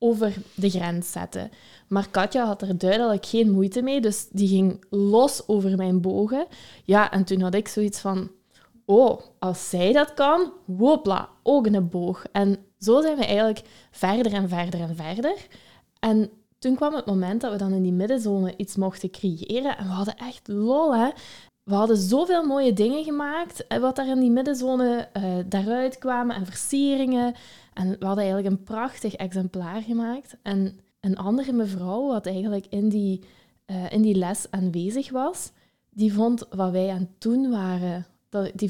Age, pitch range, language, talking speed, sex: 20-39, 190-240 Hz, Dutch, 170 wpm, female